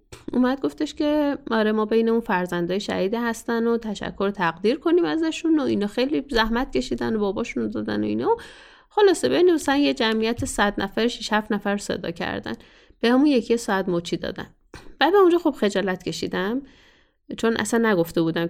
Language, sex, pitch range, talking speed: Persian, female, 190-260 Hz, 180 wpm